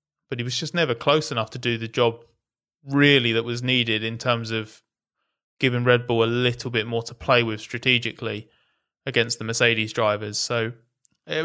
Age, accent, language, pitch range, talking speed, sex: 20-39, British, English, 115-135 Hz, 185 wpm, male